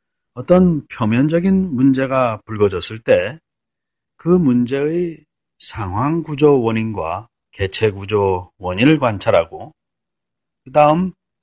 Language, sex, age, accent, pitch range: Korean, male, 40-59, native, 105-150 Hz